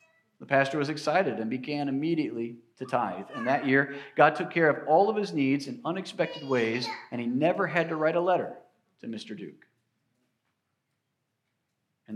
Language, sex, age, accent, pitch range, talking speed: English, male, 40-59, American, 130-195 Hz, 175 wpm